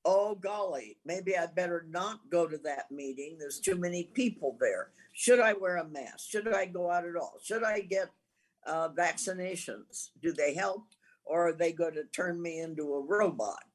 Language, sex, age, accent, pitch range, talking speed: English, female, 60-79, American, 165-220 Hz, 190 wpm